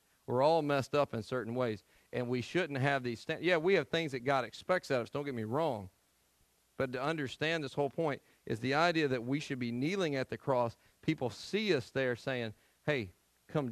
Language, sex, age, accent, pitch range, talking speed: English, male, 40-59, American, 110-145 Hz, 225 wpm